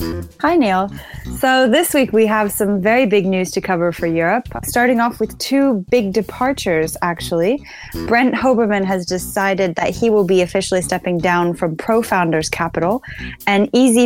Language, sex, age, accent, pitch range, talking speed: English, female, 10-29, American, 180-220 Hz, 165 wpm